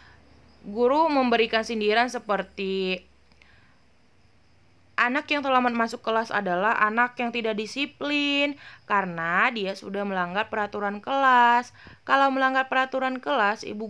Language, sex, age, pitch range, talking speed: Malay, female, 20-39, 190-255 Hz, 110 wpm